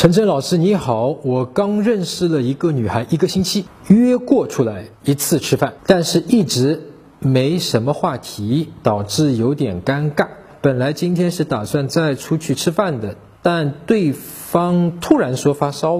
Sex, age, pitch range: male, 50-69, 135-185 Hz